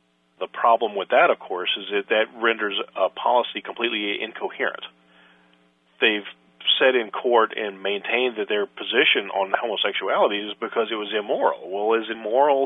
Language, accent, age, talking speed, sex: English, American, 40-59, 160 wpm, male